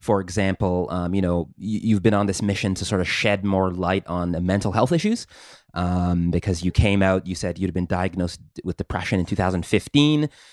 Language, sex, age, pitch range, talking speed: English, male, 30-49, 95-120 Hz, 200 wpm